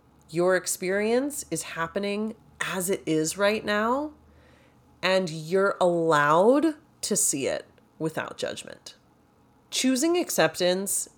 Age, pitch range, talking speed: 30-49, 170-230 Hz, 100 wpm